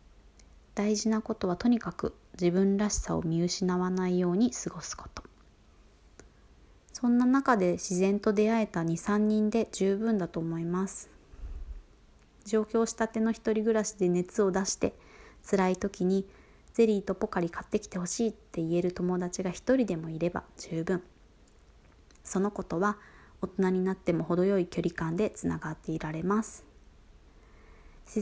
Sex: female